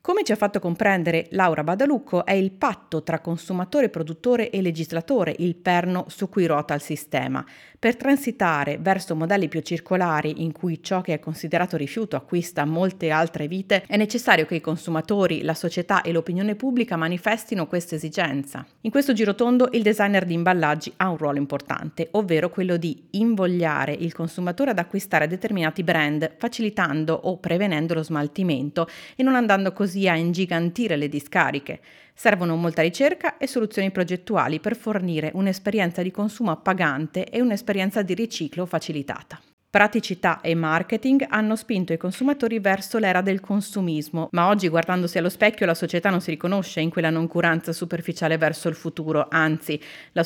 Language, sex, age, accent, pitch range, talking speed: Italian, female, 30-49, native, 160-200 Hz, 160 wpm